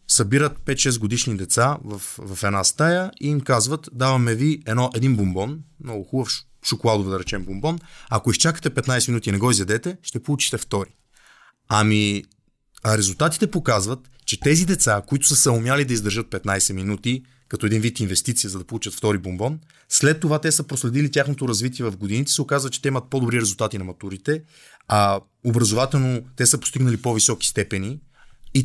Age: 30-49